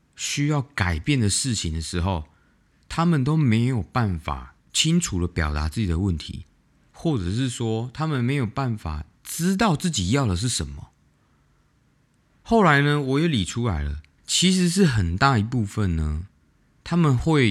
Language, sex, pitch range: Chinese, male, 90-145 Hz